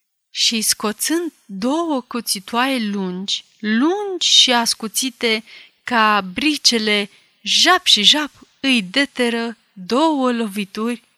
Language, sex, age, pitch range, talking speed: Romanian, female, 30-49, 210-280 Hz, 90 wpm